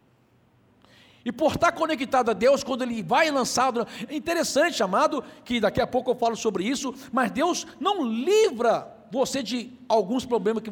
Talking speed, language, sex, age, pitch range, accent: 175 wpm, Portuguese, male, 60-79, 185-275 Hz, Brazilian